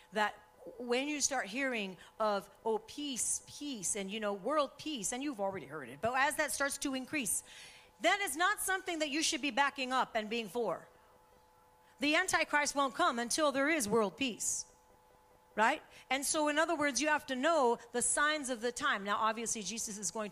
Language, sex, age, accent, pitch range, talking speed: English, female, 40-59, American, 215-295 Hz, 200 wpm